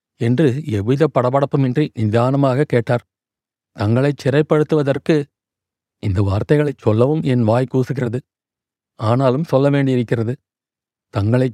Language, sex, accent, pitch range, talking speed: Tamil, male, native, 120-140 Hz, 90 wpm